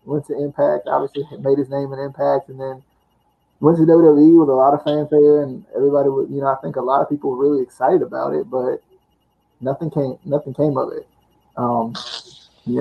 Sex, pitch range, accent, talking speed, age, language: male, 120-145 Hz, American, 205 wpm, 20-39, English